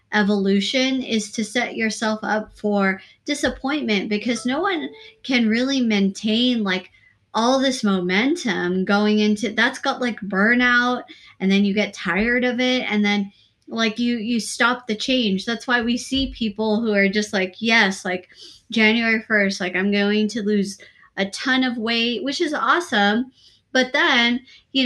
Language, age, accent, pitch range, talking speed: English, 20-39, American, 200-245 Hz, 160 wpm